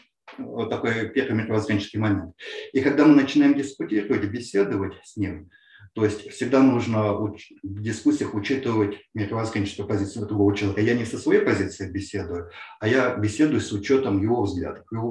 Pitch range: 105-135 Hz